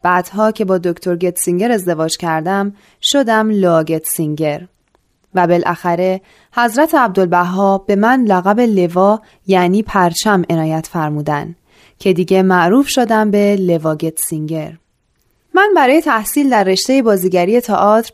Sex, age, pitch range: female, 20-39, 180-250 Hz